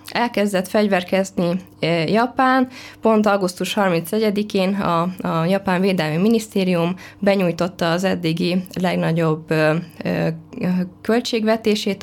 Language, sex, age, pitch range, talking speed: Hungarian, female, 20-39, 165-200 Hz, 80 wpm